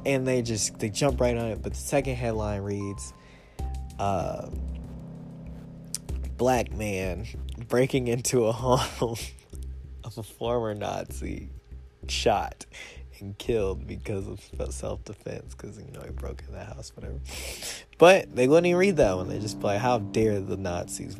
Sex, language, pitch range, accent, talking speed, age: male, English, 100-145 Hz, American, 150 wpm, 20-39